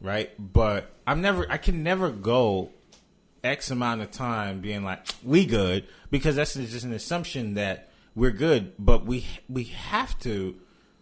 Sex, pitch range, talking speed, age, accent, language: male, 100-135 Hz, 160 wpm, 30-49, American, English